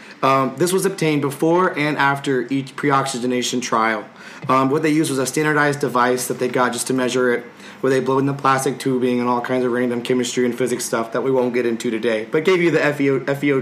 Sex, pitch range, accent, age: male, 125-150 Hz, American, 30-49